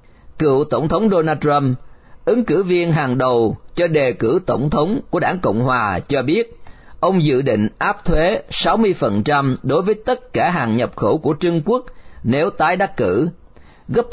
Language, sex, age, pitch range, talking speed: Vietnamese, male, 40-59, 130-175 Hz, 180 wpm